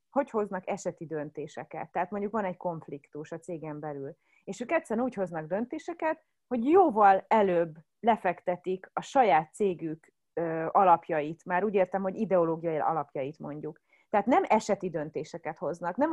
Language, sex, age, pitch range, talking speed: Hungarian, female, 30-49, 170-225 Hz, 145 wpm